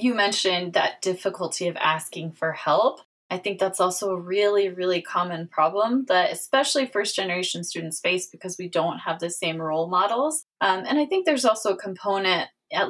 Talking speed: 185 wpm